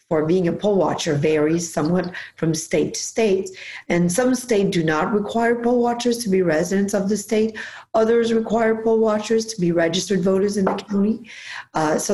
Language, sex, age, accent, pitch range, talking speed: English, female, 40-59, American, 165-210 Hz, 190 wpm